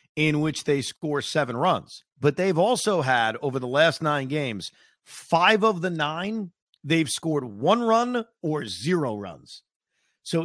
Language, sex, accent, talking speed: English, male, American, 155 wpm